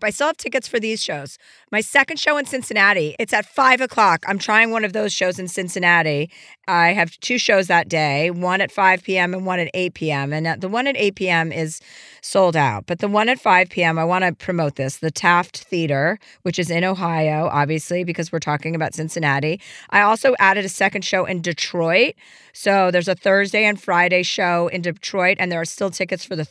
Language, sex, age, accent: English, female, 40-59, American